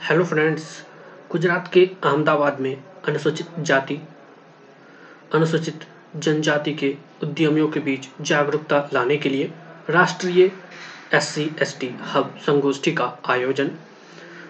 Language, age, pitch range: Hindi, 20-39, 140-170 Hz